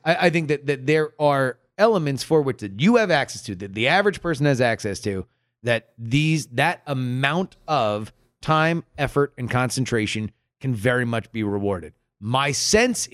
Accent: American